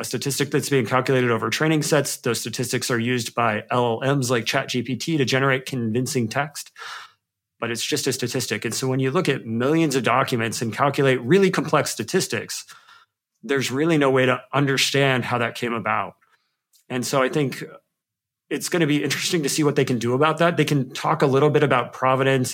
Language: English